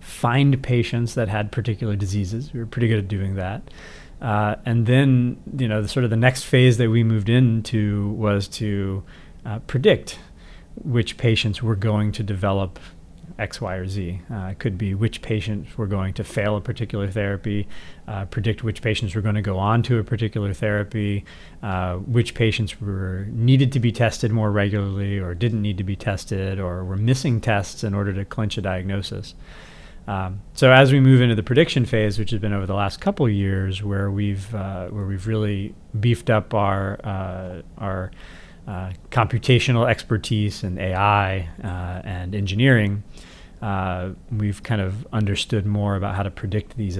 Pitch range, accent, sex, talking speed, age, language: 95-115 Hz, American, male, 180 wpm, 40-59, English